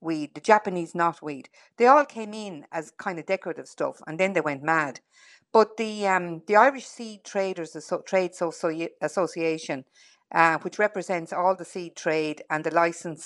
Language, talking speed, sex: English, 170 wpm, female